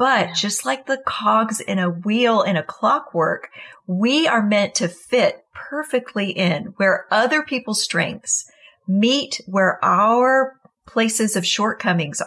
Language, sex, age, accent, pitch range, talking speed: English, female, 40-59, American, 195-245 Hz, 135 wpm